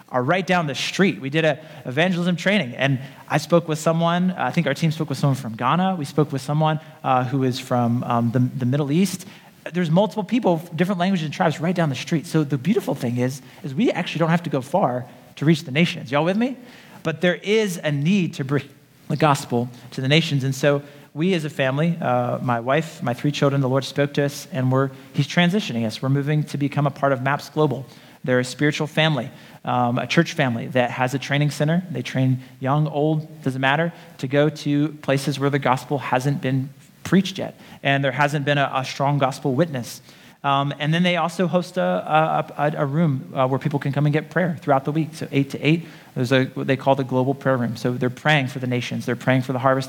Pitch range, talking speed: 135-165 Hz, 235 wpm